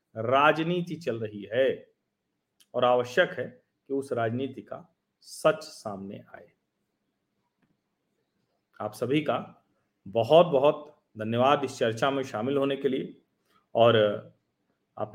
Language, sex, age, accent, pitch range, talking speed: Hindi, male, 40-59, native, 120-165 Hz, 115 wpm